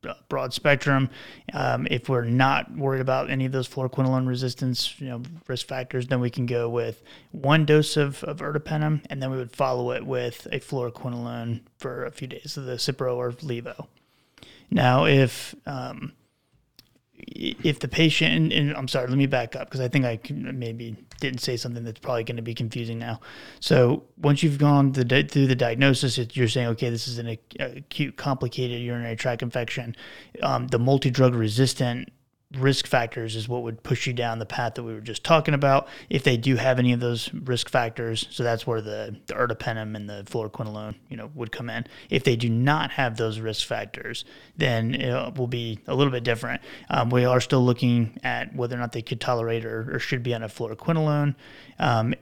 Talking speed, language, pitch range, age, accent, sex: 195 wpm, English, 120-135 Hz, 30-49, American, male